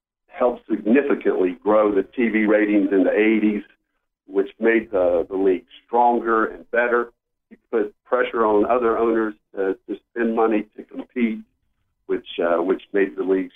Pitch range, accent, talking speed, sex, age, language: 100-135 Hz, American, 155 wpm, male, 50-69, English